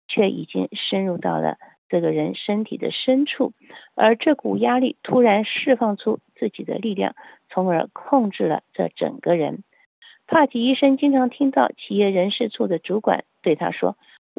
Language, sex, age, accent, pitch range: Chinese, female, 50-69, native, 175-255 Hz